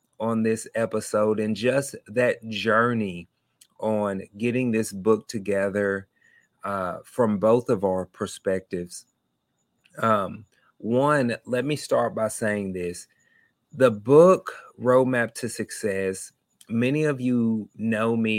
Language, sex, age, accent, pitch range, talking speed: English, male, 30-49, American, 100-120 Hz, 120 wpm